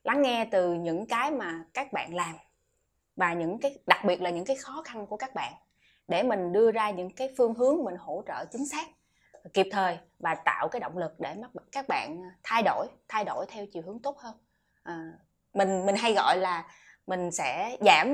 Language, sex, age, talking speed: Vietnamese, female, 20-39, 210 wpm